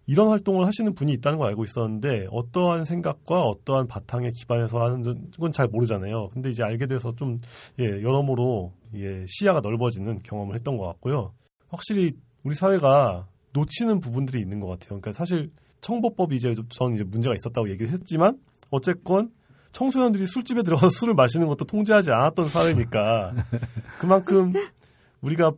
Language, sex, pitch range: Korean, male, 115-160 Hz